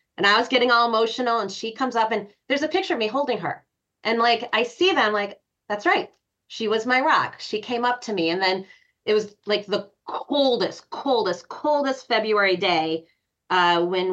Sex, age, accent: female, 30-49, American